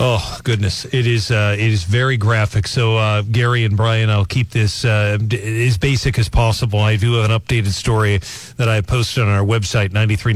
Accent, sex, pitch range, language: American, male, 110-125 Hz, English